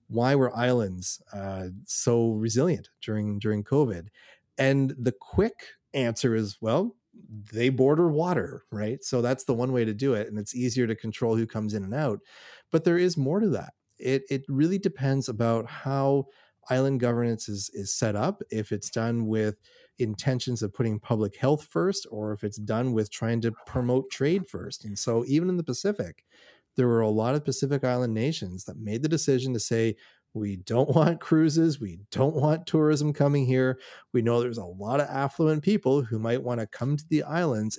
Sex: male